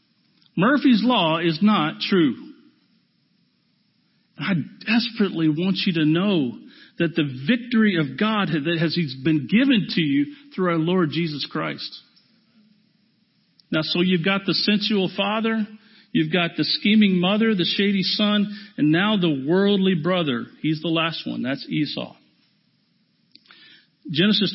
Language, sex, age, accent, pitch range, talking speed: English, male, 50-69, American, 165-225 Hz, 130 wpm